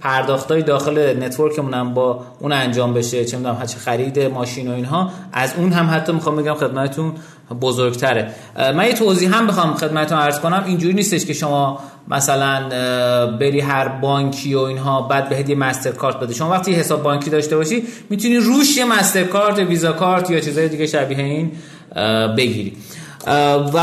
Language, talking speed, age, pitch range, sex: Persian, 165 wpm, 30-49, 140-195 Hz, male